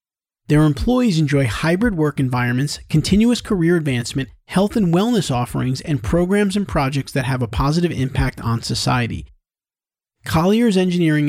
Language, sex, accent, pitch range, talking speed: English, male, American, 135-175 Hz, 140 wpm